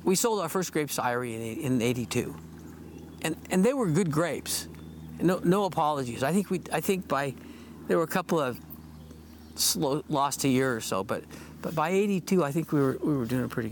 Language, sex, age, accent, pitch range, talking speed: English, male, 60-79, American, 95-160 Hz, 210 wpm